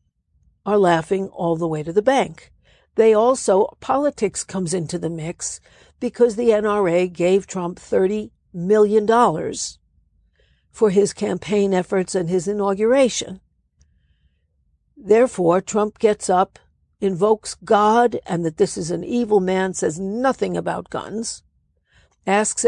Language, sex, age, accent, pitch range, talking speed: English, female, 60-79, American, 175-220 Hz, 125 wpm